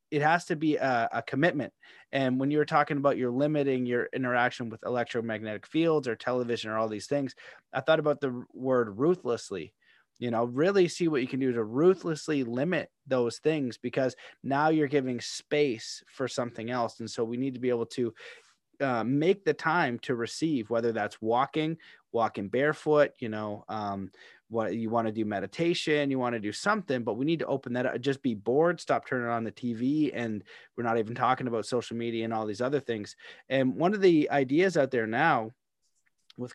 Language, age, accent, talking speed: English, 30-49, American, 200 wpm